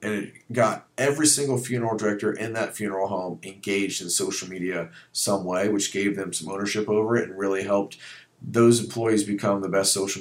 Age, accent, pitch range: 40-59, American, 100-115 Hz